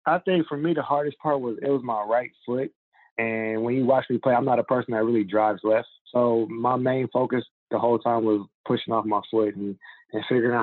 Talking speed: 245 wpm